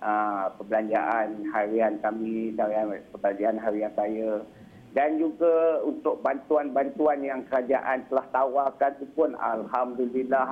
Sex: male